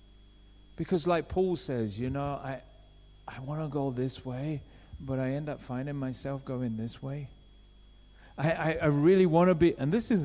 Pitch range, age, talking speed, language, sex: 150-220 Hz, 40-59, 185 wpm, English, male